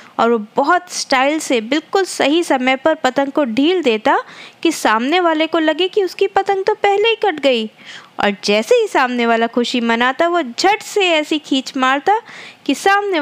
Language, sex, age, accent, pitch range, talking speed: Hindi, female, 20-39, native, 250-350 Hz, 185 wpm